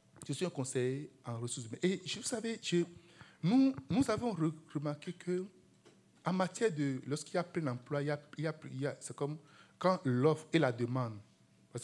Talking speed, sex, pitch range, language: 160 wpm, male, 115-180 Hz, French